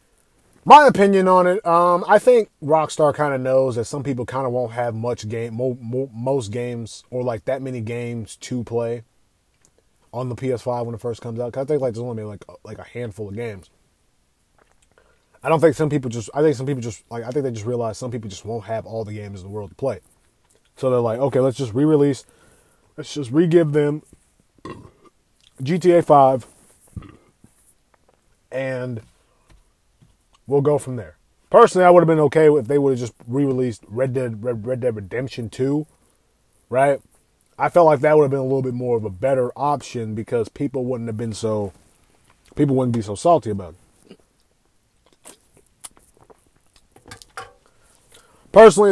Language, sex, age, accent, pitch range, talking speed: English, male, 20-39, American, 115-145 Hz, 180 wpm